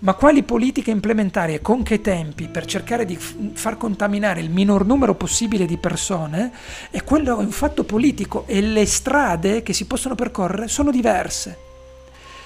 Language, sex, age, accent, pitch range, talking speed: Italian, male, 50-69, native, 175-240 Hz, 150 wpm